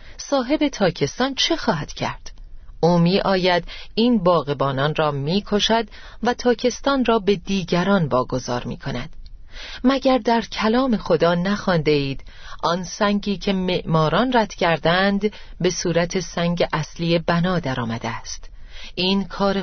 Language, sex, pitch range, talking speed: Persian, female, 165-225 Hz, 120 wpm